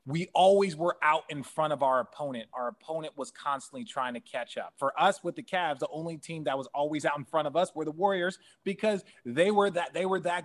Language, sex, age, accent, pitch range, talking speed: English, male, 30-49, American, 135-205 Hz, 245 wpm